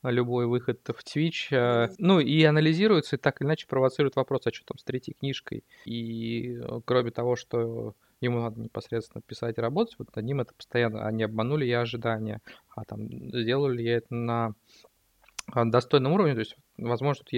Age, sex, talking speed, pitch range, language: 20-39, male, 175 wpm, 115-140 Hz, Russian